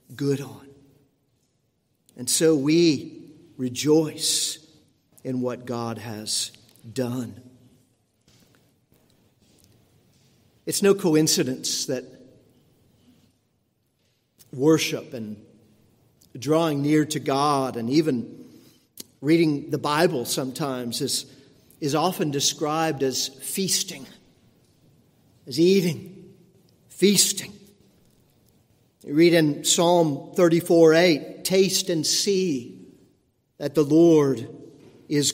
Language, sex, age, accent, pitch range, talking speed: English, male, 50-69, American, 140-170 Hz, 85 wpm